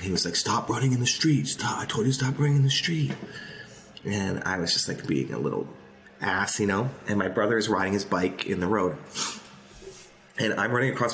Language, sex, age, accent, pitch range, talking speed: English, male, 30-49, American, 100-140 Hz, 225 wpm